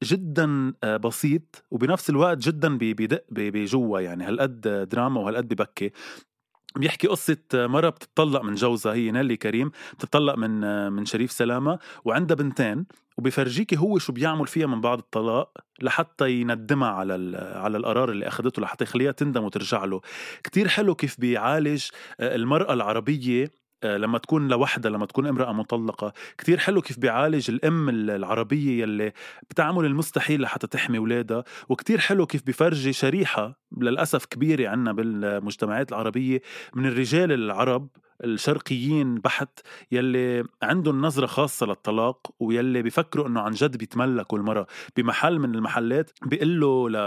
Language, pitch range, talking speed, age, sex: Arabic, 115-150 Hz, 135 wpm, 20-39, male